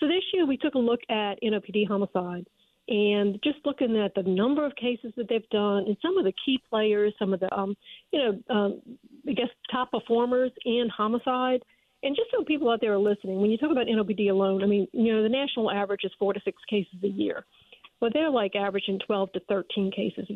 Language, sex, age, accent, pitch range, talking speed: English, female, 50-69, American, 200-245 Hz, 230 wpm